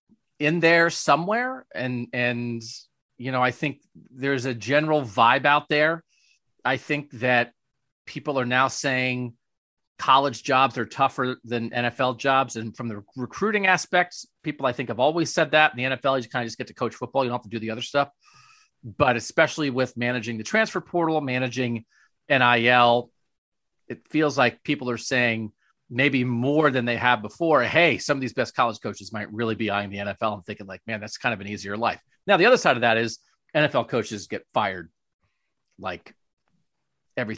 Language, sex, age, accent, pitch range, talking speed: English, male, 40-59, American, 115-150 Hz, 190 wpm